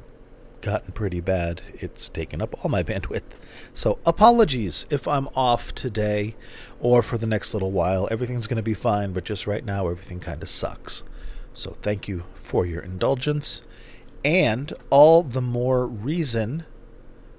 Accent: American